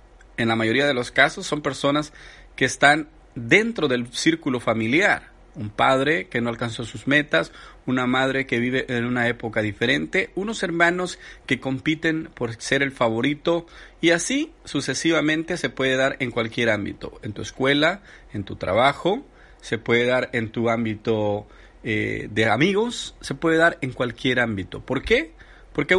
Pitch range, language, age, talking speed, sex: 125-180 Hz, Spanish, 40-59, 160 wpm, male